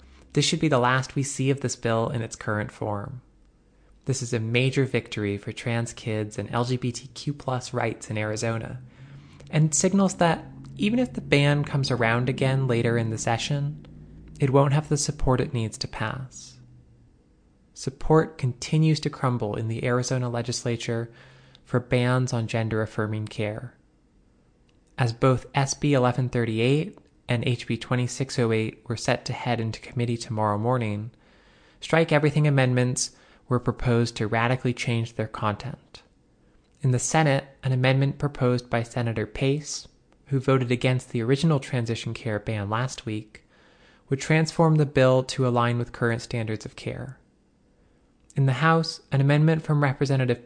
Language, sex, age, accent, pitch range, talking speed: English, male, 20-39, American, 115-135 Hz, 150 wpm